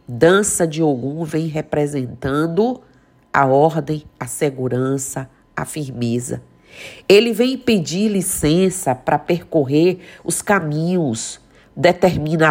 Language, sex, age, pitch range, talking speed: Portuguese, female, 50-69, 140-180 Hz, 95 wpm